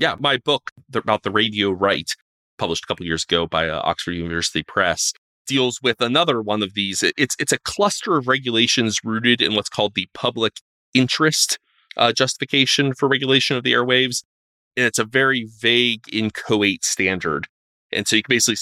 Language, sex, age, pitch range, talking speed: English, male, 30-49, 95-125 Hz, 180 wpm